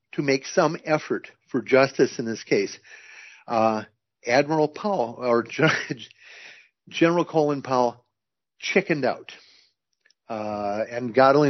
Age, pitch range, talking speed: 50-69, 125-165 Hz, 120 wpm